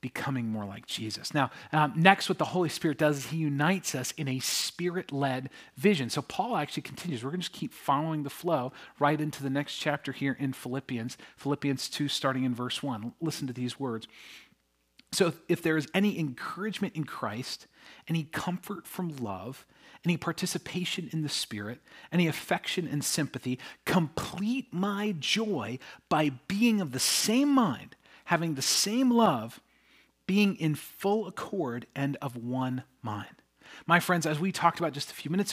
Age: 40-59